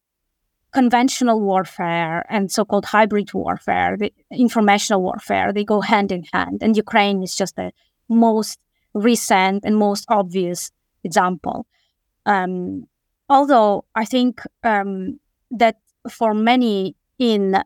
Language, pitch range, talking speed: English, 190-220 Hz, 115 wpm